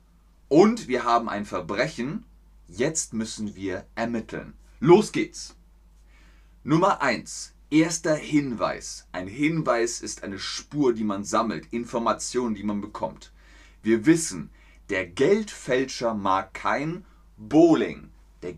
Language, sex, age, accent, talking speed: German, male, 30-49, German, 115 wpm